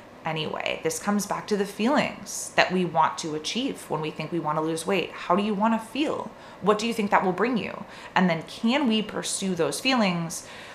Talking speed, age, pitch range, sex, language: 230 wpm, 20-39, 180-225 Hz, female, English